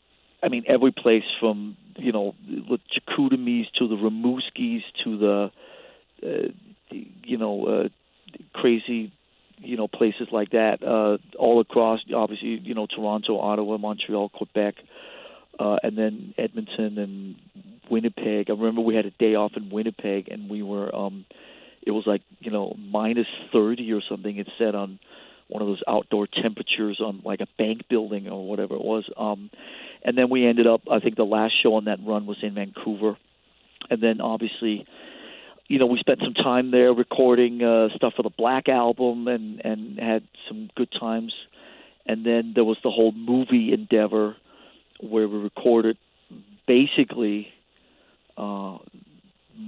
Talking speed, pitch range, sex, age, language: 160 wpm, 105-120 Hz, male, 40-59, English